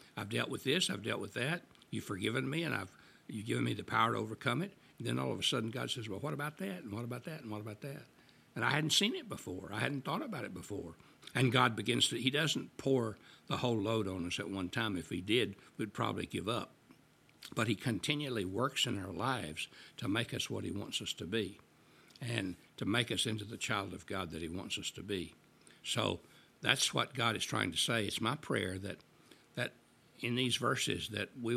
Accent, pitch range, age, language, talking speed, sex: American, 100-125 Hz, 60-79, English, 230 wpm, male